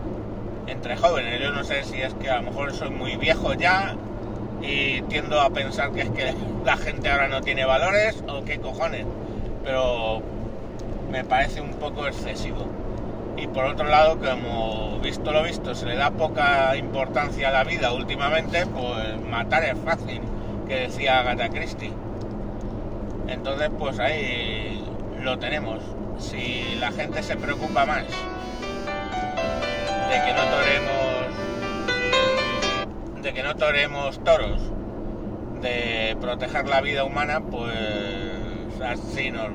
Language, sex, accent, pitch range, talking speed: Spanish, male, Spanish, 110-125 Hz, 130 wpm